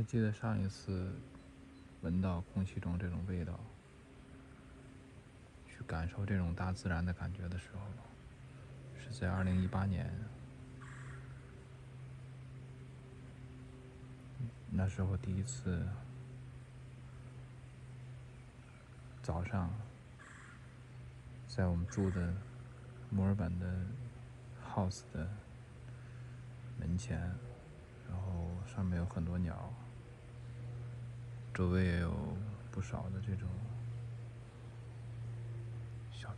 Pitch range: 95-125 Hz